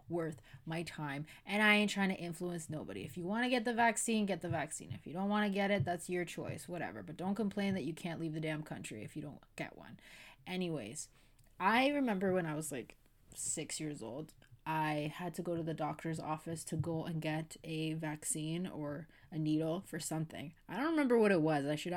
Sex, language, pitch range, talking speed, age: female, English, 155-185 Hz, 225 wpm, 20-39